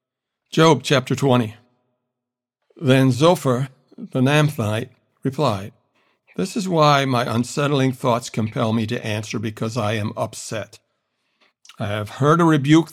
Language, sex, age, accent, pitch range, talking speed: English, male, 60-79, American, 120-145 Hz, 125 wpm